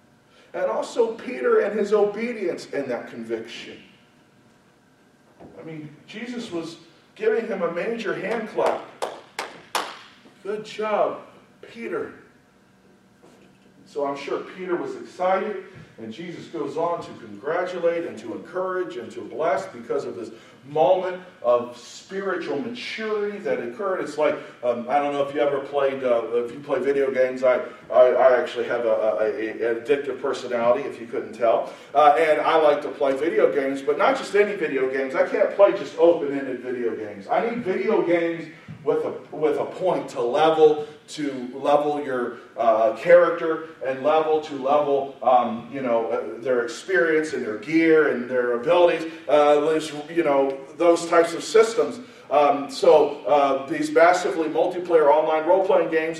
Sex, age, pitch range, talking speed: male, 40-59, 145-210 Hz, 155 wpm